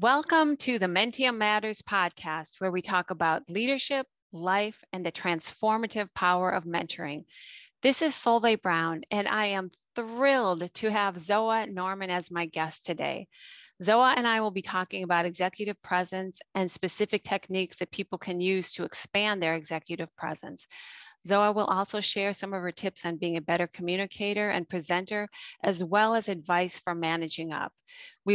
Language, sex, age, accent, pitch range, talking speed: English, female, 30-49, American, 175-210 Hz, 165 wpm